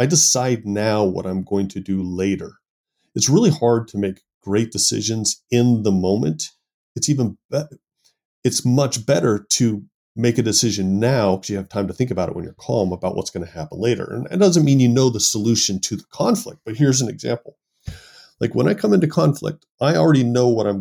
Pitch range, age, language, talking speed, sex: 100-125 Hz, 30-49, English, 210 wpm, male